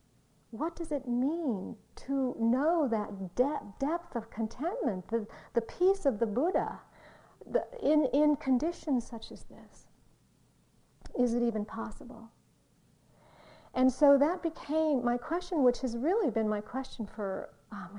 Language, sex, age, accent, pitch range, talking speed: English, female, 50-69, American, 220-290 Hz, 135 wpm